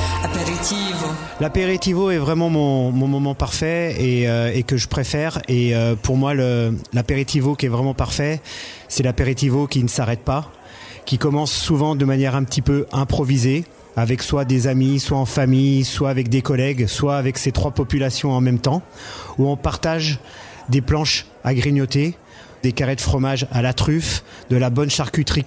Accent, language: French, French